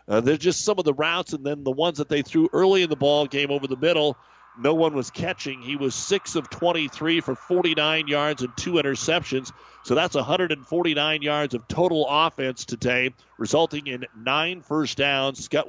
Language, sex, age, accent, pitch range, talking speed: English, male, 50-69, American, 130-165 Hz, 195 wpm